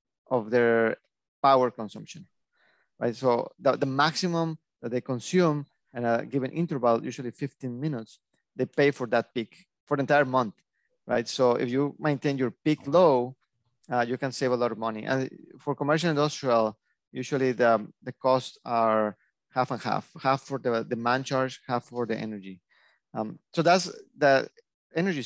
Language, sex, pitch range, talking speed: English, male, 120-145 Hz, 170 wpm